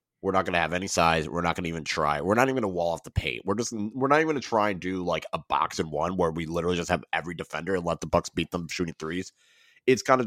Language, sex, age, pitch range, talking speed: English, male, 30-49, 80-105 Hz, 320 wpm